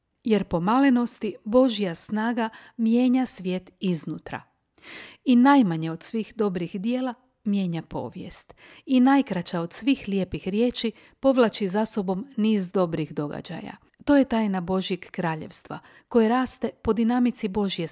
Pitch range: 185-245 Hz